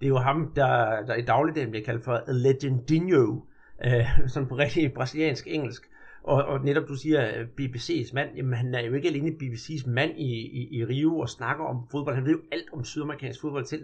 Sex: male